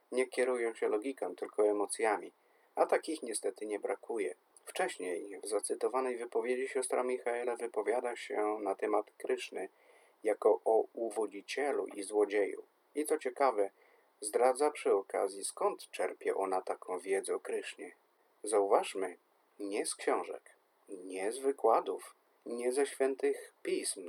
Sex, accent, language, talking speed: male, native, Polish, 125 wpm